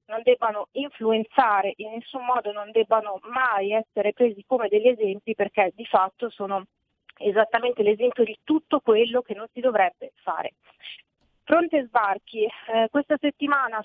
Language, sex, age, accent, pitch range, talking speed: Italian, female, 40-59, native, 205-245 Hz, 145 wpm